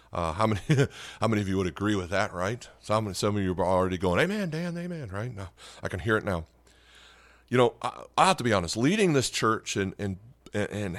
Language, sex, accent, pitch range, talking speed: English, male, American, 90-120 Hz, 240 wpm